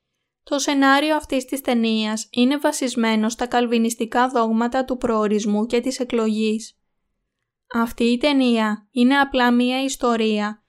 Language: Greek